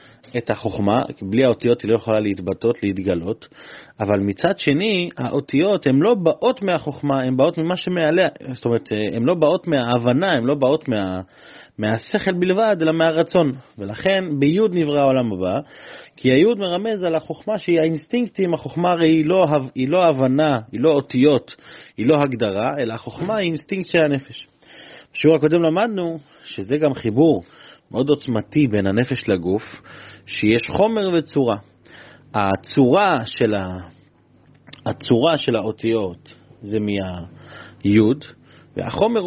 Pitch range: 115-175 Hz